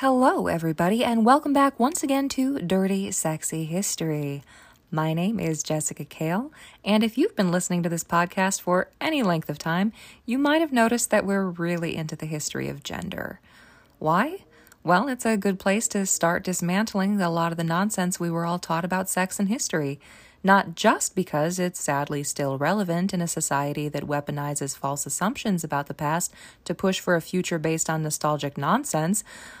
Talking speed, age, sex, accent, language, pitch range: 180 wpm, 20-39, female, American, English, 155-210 Hz